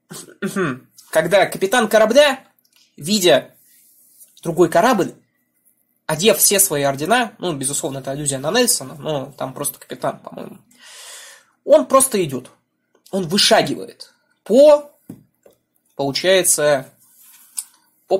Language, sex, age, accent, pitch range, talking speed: Russian, male, 20-39, native, 160-235 Hz, 95 wpm